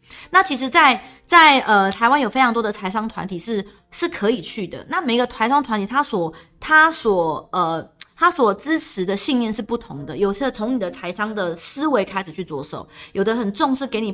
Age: 30-49